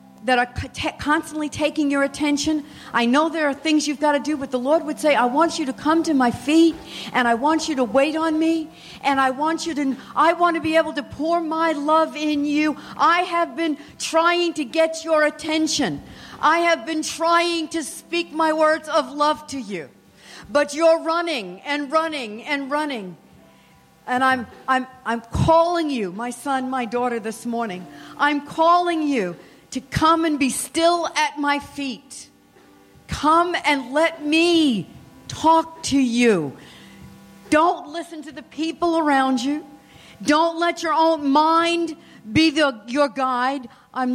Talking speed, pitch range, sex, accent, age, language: 170 wpm, 265-320 Hz, female, American, 50-69, English